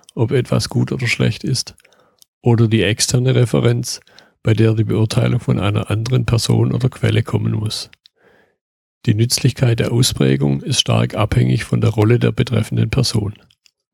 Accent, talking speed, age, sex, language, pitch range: German, 150 wpm, 50-69, male, German, 100-120 Hz